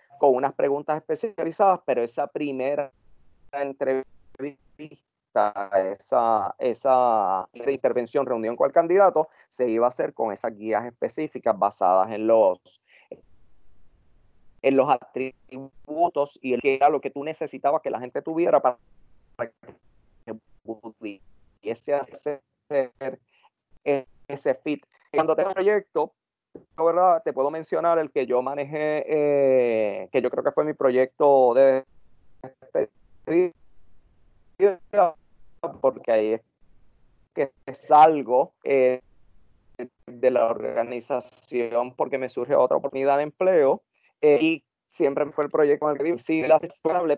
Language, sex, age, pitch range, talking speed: English, male, 30-49, 120-150 Hz, 115 wpm